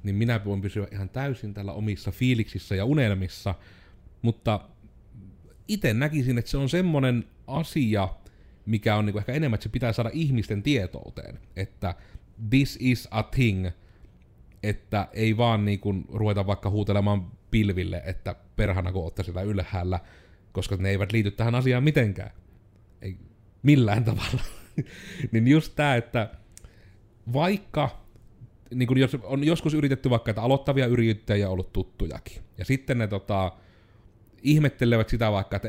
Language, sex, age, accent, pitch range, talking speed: Finnish, male, 30-49, native, 95-120 Hz, 140 wpm